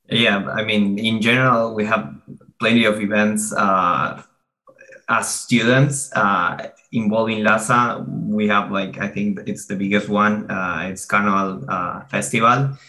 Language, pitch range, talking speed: English, 95-110 Hz, 140 wpm